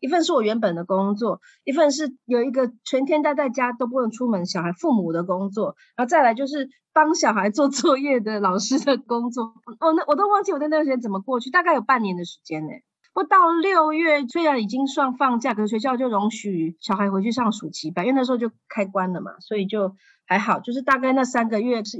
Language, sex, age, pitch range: Chinese, female, 30-49, 205-275 Hz